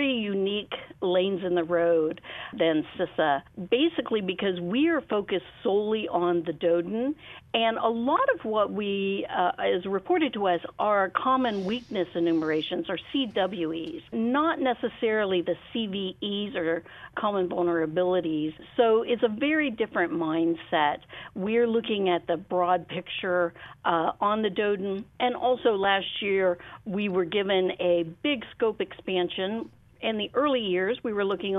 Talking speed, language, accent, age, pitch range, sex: 140 wpm, English, American, 50-69, 180-235 Hz, female